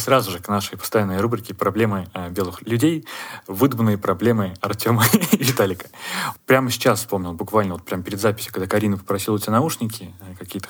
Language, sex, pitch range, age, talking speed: Russian, male, 100-120 Hz, 20-39, 170 wpm